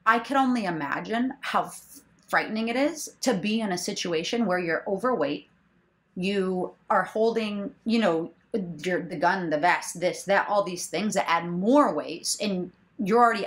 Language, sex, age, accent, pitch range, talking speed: English, female, 30-49, American, 180-230 Hz, 165 wpm